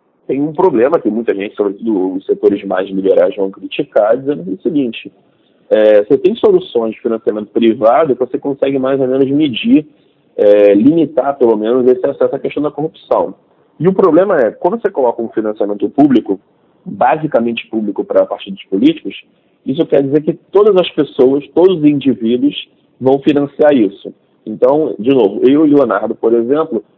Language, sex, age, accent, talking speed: Portuguese, male, 40-59, Brazilian, 175 wpm